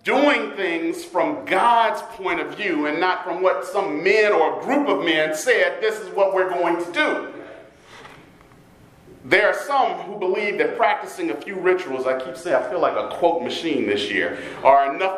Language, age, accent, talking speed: English, 40-59, American, 195 wpm